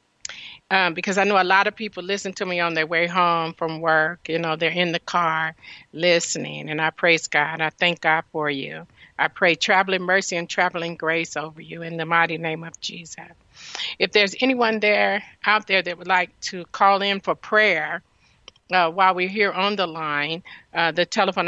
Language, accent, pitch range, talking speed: English, American, 160-195 Hz, 200 wpm